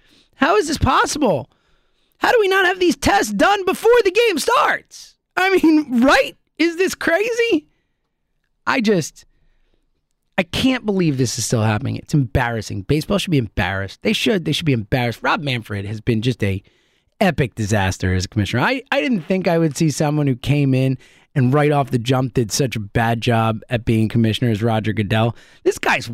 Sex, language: male, English